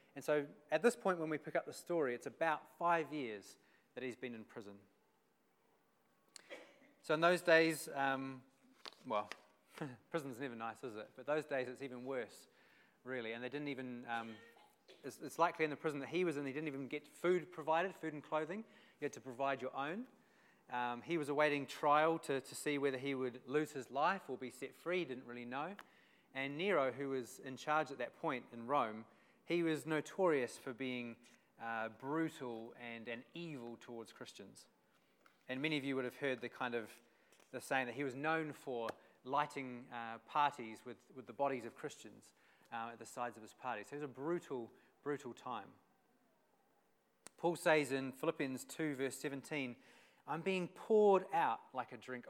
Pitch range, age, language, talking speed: 125-160 Hz, 30-49, English, 190 wpm